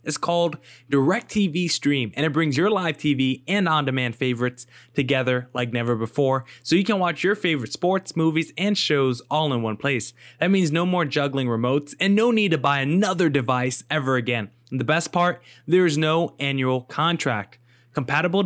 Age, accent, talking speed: 20-39, American, 185 wpm